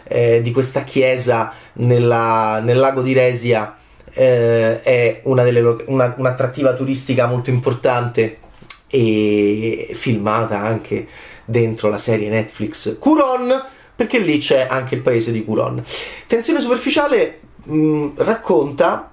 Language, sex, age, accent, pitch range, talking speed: Italian, male, 30-49, native, 115-165 Hz, 105 wpm